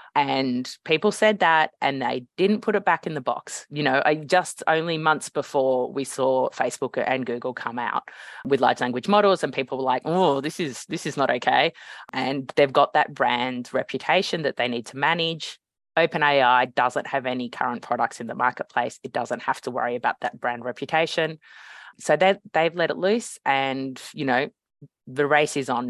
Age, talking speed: 20-39, 195 wpm